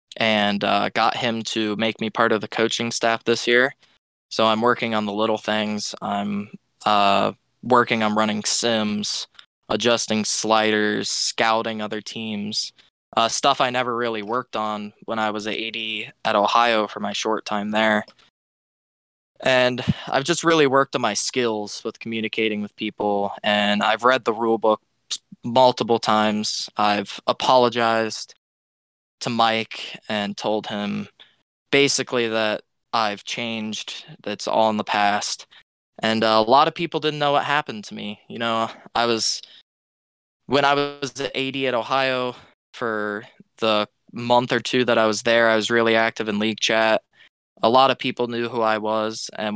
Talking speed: 160 wpm